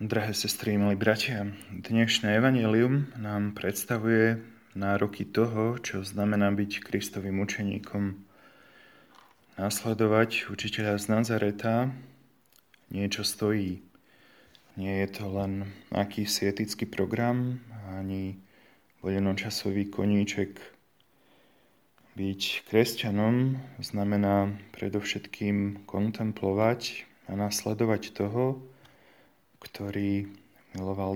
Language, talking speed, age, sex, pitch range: Slovak, 80 wpm, 20-39, male, 100-110 Hz